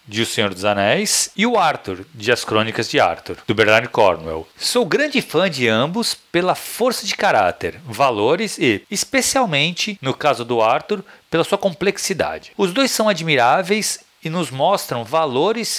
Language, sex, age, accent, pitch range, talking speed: Portuguese, male, 40-59, Brazilian, 130-200 Hz, 165 wpm